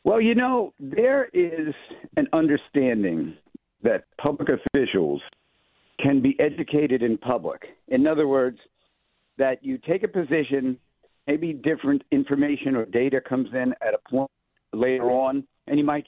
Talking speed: 140 wpm